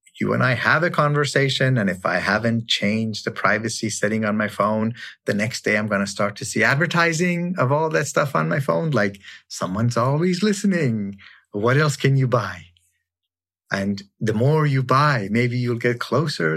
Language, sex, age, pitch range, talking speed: English, male, 30-49, 100-150 Hz, 190 wpm